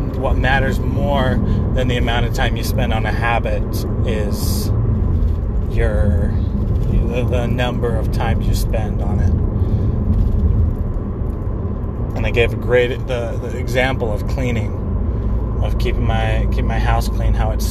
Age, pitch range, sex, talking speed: 30-49, 100-115 Hz, male, 140 wpm